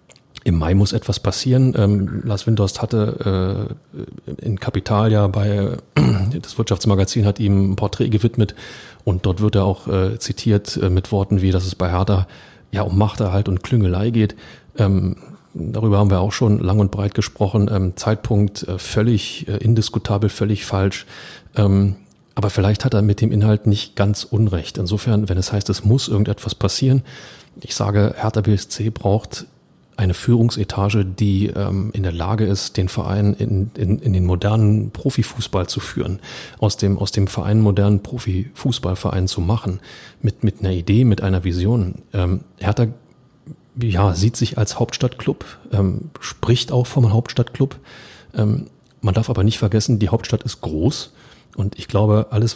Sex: male